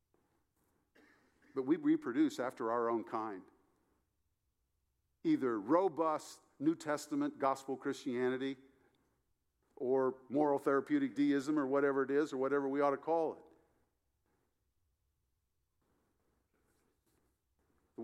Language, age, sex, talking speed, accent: English, 50-69, male, 95 wpm, American